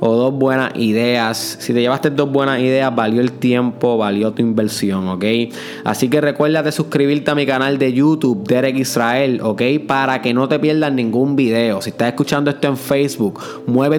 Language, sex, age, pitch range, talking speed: Spanish, male, 20-39, 115-145 Hz, 190 wpm